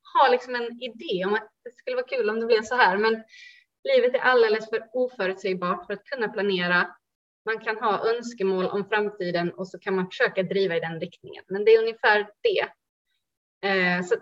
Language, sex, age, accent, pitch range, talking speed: Swedish, female, 30-49, native, 195-315 Hz, 195 wpm